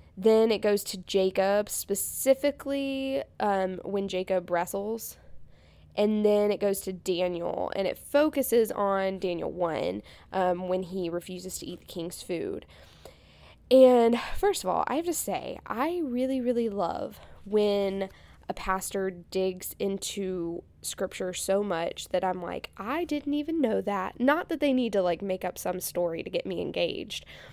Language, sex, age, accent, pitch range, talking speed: English, female, 10-29, American, 185-245 Hz, 160 wpm